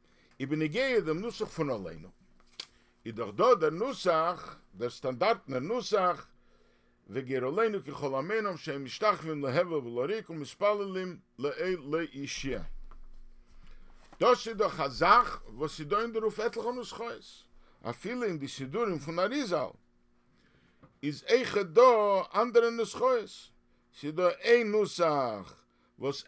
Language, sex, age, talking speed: English, male, 50-69, 100 wpm